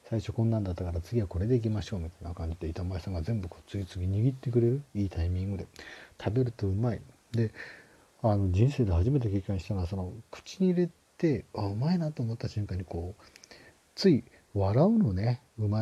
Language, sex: Japanese, male